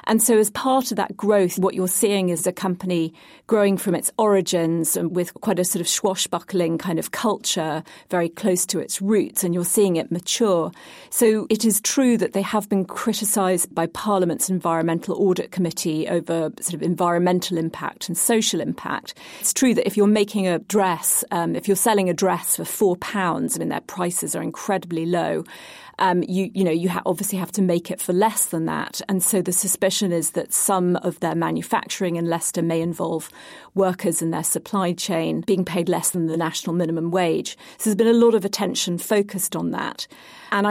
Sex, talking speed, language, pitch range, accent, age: female, 200 wpm, English, 170-200 Hz, British, 40-59